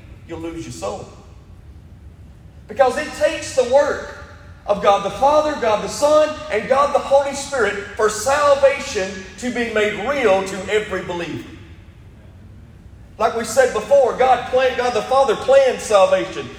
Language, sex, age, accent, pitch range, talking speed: English, male, 40-59, American, 195-275 Hz, 150 wpm